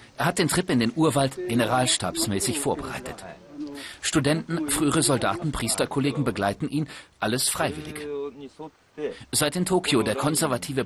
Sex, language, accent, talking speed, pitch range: male, German, German, 120 wpm, 110-145 Hz